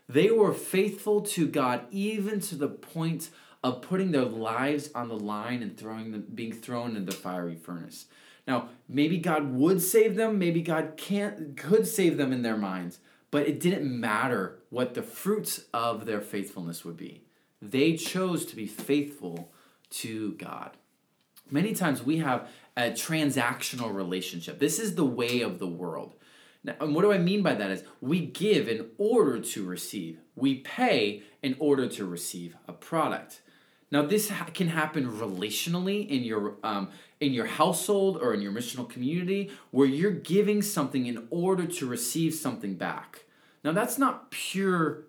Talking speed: 170 wpm